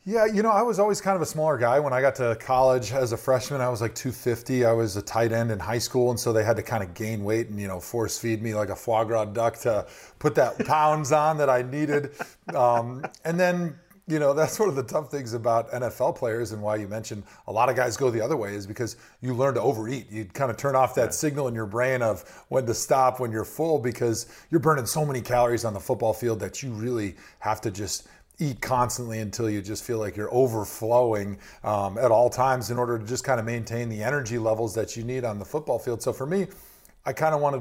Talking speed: 255 wpm